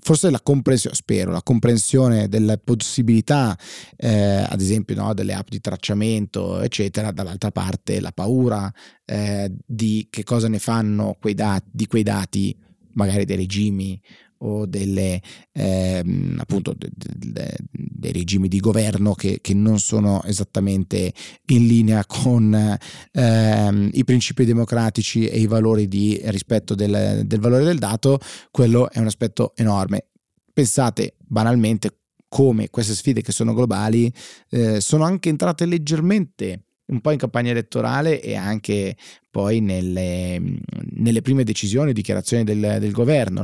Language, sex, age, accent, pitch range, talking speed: Italian, male, 30-49, native, 100-120 Hz, 140 wpm